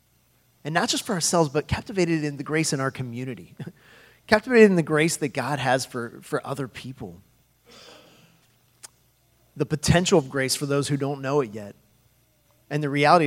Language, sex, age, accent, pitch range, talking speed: English, male, 30-49, American, 120-150 Hz, 170 wpm